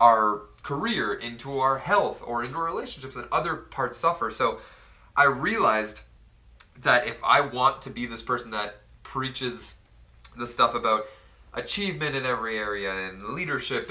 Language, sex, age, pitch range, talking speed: English, male, 30-49, 115-140 Hz, 145 wpm